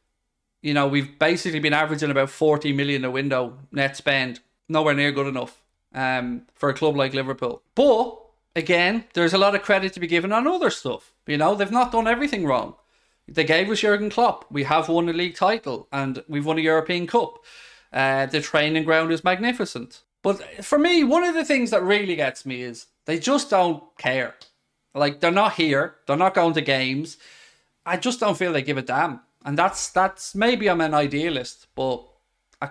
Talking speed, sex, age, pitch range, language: 195 wpm, male, 20-39, 135-185 Hz, English